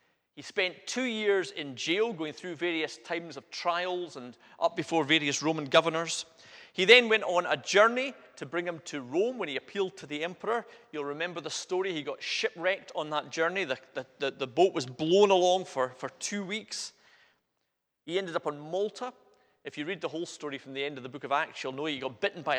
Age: 30-49